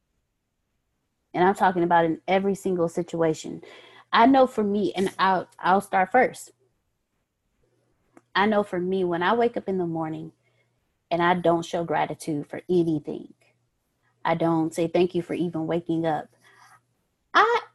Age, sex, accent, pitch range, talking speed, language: 20-39, female, American, 165-200 Hz, 150 wpm, English